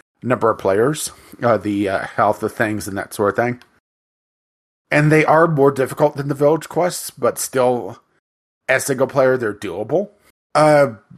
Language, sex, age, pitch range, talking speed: English, male, 30-49, 105-140 Hz, 165 wpm